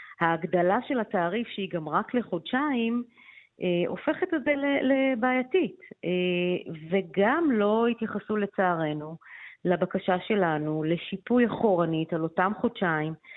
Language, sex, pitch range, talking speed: Hebrew, female, 165-215 Hz, 90 wpm